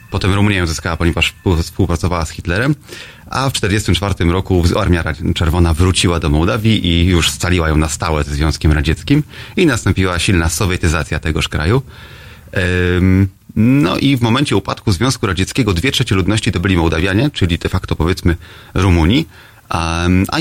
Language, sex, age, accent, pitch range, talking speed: Polish, male, 30-49, native, 85-105 Hz, 150 wpm